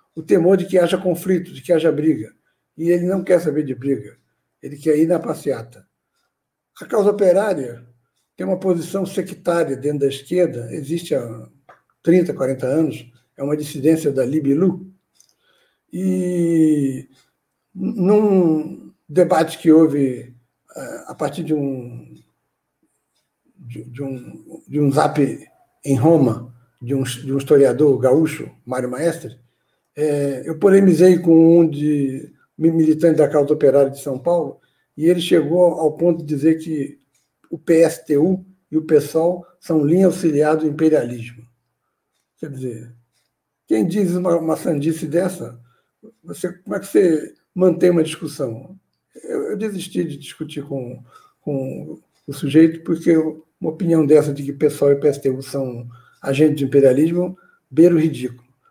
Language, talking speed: Portuguese, 135 wpm